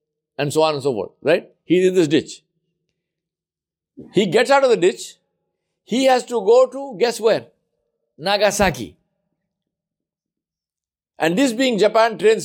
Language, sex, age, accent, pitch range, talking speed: English, male, 60-79, Indian, 165-245 Hz, 145 wpm